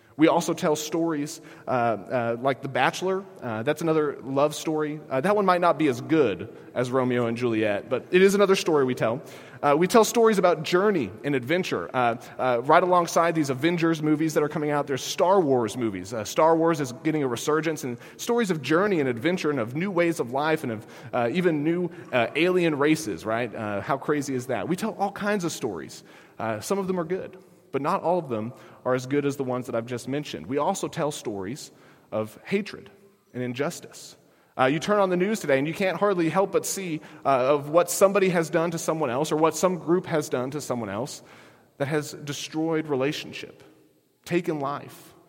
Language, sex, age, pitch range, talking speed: English, male, 30-49, 125-175 Hz, 215 wpm